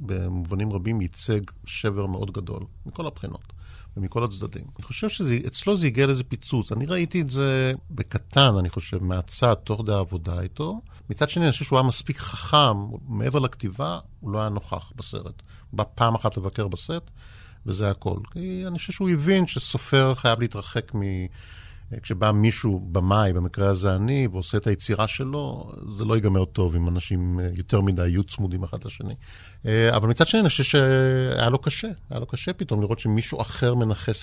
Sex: male